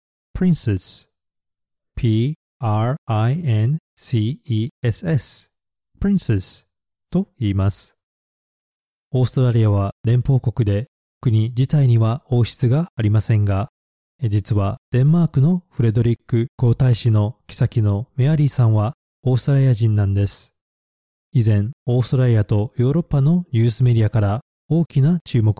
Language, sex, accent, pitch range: Japanese, male, native, 105-140 Hz